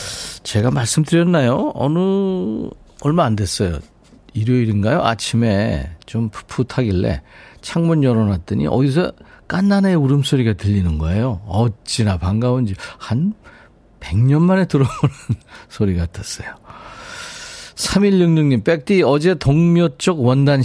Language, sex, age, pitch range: Korean, male, 50-69, 100-145 Hz